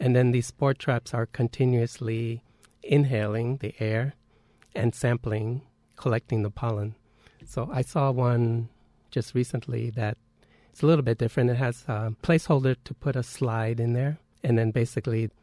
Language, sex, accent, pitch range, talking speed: English, male, American, 110-125 Hz, 150 wpm